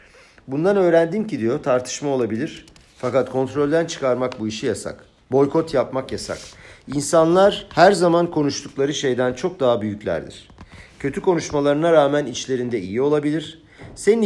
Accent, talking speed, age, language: native, 125 wpm, 50-69, Turkish